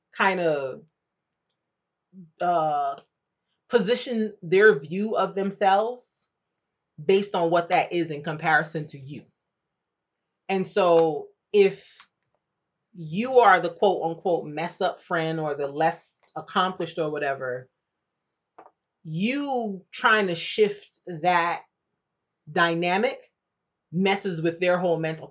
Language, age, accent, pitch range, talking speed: English, 30-49, American, 155-200 Hz, 105 wpm